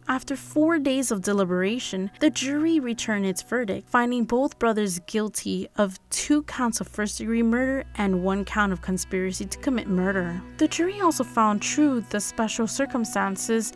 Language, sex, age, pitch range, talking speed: English, female, 20-39, 195-245 Hz, 155 wpm